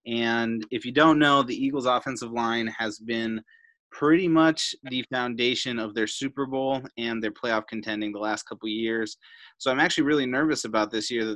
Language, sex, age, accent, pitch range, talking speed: English, male, 20-39, American, 115-155 Hz, 190 wpm